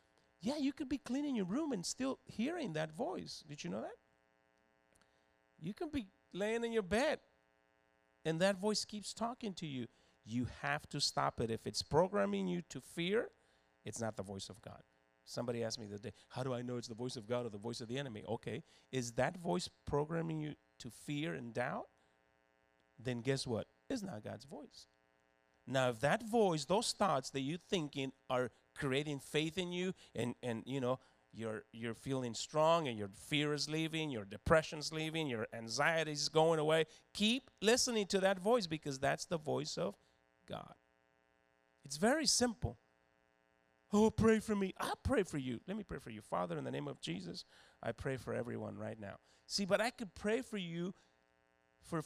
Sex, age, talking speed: male, 40-59, 190 wpm